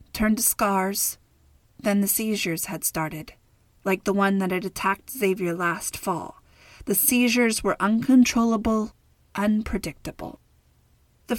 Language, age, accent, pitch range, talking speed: English, 30-49, American, 185-230 Hz, 120 wpm